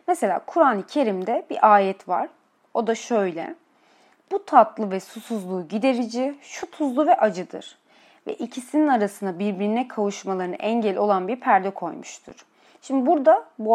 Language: Turkish